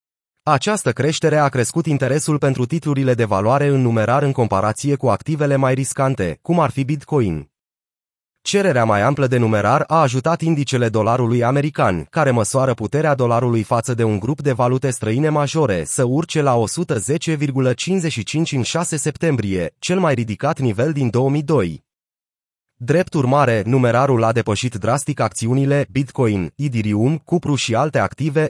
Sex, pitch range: male, 115-150 Hz